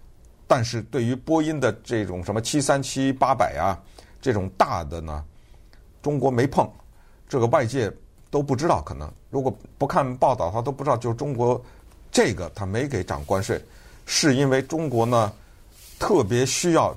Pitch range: 110-145 Hz